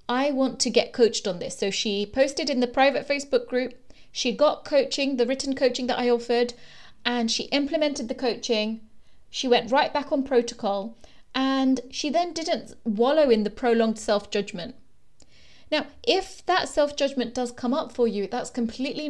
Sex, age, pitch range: female, 30-49, 220-270 Hz